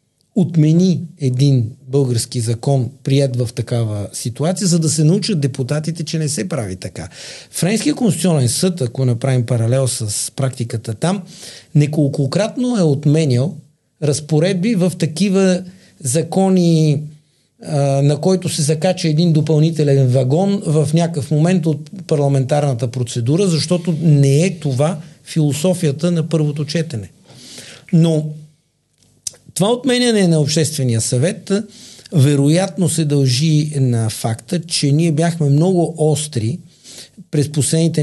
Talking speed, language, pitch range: 115 wpm, Bulgarian, 130-165 Hz